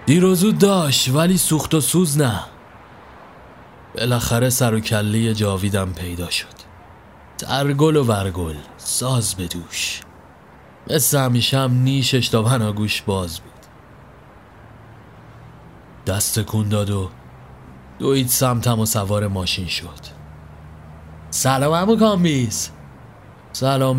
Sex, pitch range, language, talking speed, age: male, 85-125 Hz, Persian, 110 wpm, 30-49